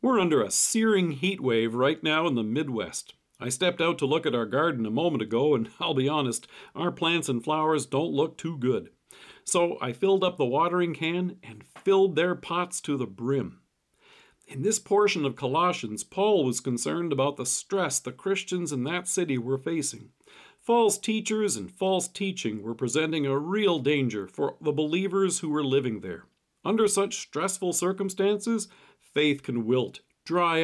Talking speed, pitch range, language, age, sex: 180 wpm, 135-195 Hz, English, 50-69, male